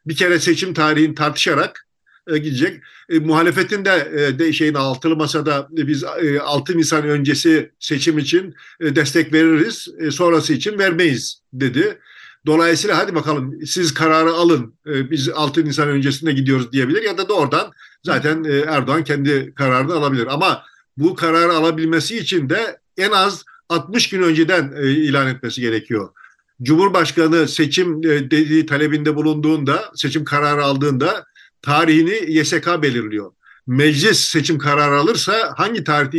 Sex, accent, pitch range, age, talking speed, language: male, native, 145-165 Hz, 50-69, 140 wpm, Turkish